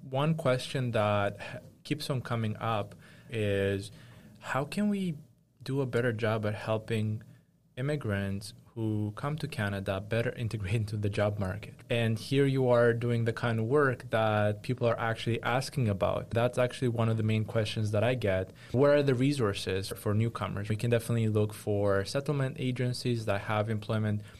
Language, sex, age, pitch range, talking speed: English, male, 20-39, 110-125 Hz, 170 wpm